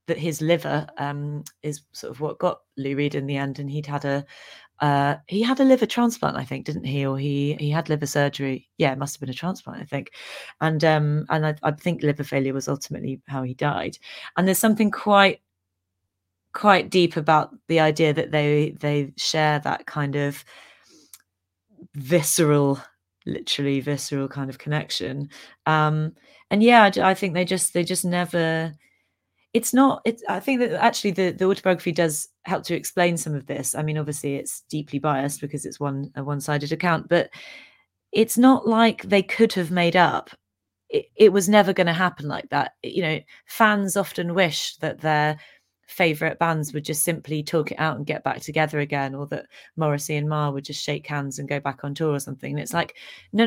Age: 30-49